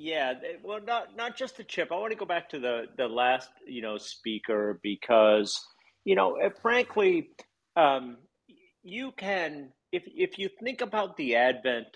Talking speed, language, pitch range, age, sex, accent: 165 wpm, English, 110-180 Hz, 50-69, male, American